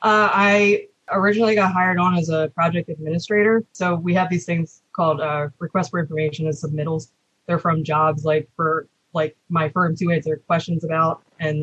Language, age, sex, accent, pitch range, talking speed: English, 20-39, female, American, 160-190 Hz, 180 wpm